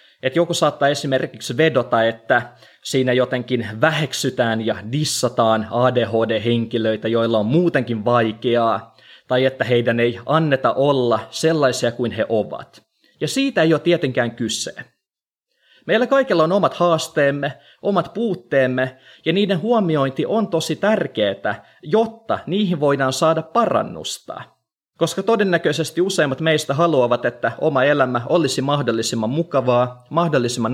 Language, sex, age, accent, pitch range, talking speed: Finnish, male, 20-39, native, 120-165 Hz, 120 wpm